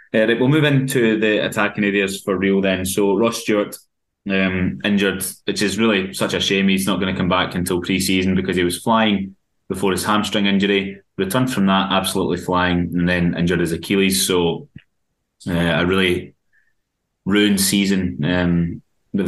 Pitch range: 90-100 Hz